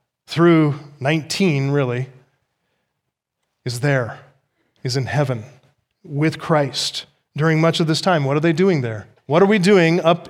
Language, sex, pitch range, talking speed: English, male, 140-185 Hz, 145 wpm